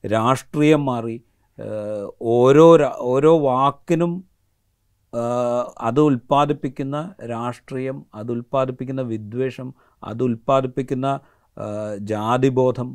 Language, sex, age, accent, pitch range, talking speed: Malayalam, male, 40-59, native, 120-145 Hz, 55 wpm